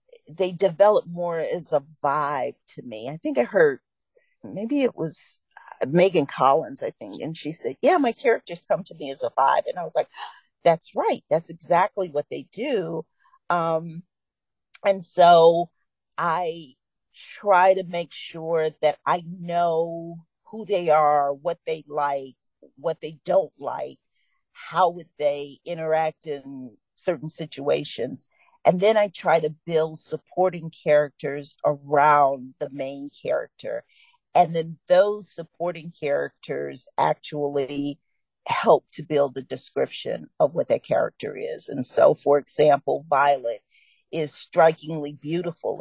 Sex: female